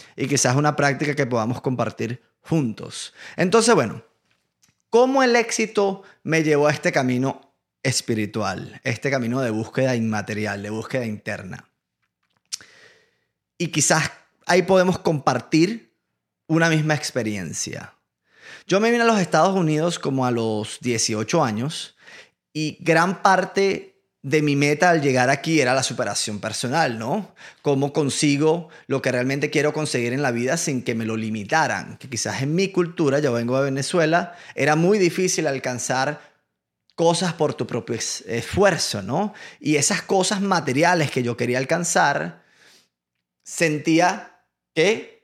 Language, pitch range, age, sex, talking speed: Spanish, 120-175 Hz, 20-39, male, 140 wpm